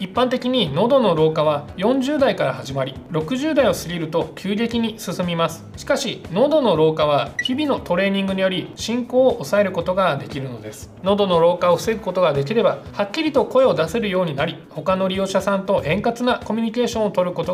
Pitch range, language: 165-235 Hz, Japanese